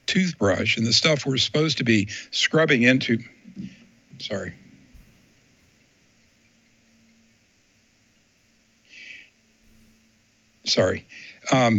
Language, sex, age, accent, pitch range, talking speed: English, male, 60-79, American, 115-145 Hz, 65 wpm